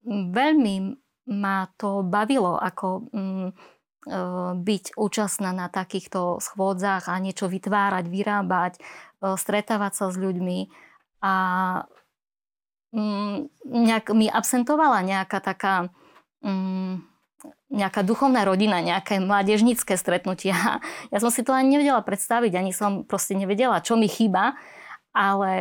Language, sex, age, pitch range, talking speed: Slovak, female, 20-39, 190-230 Hz, 115 wpm